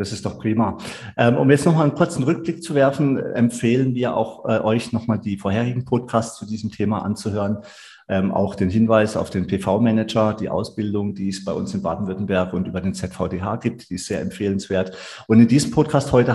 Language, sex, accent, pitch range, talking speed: German, male, German, 95-115 Hz, 190 wpm